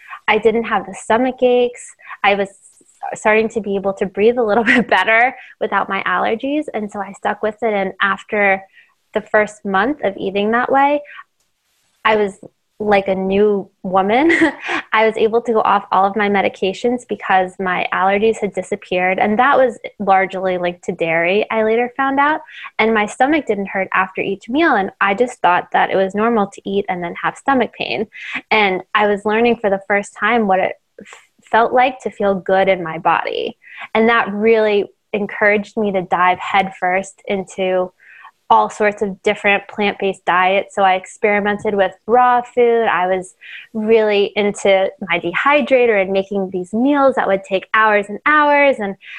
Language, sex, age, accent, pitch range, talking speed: English, female, 20-39, American, 190-230 Hz, 180 wpm